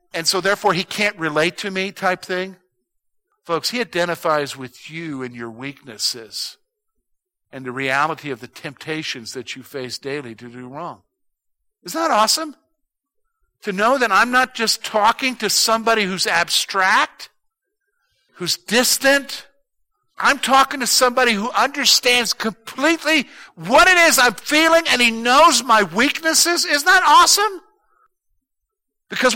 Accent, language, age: American, English, 50-69